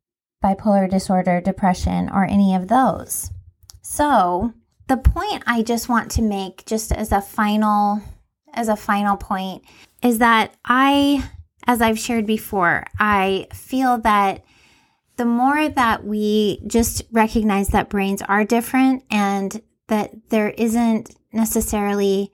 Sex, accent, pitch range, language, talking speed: female, American, 195-235 Hz, English, 130 wpm